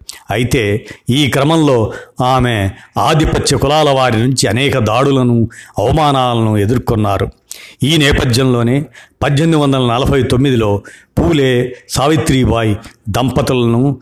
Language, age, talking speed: Telugu, 50-69, 80 wpm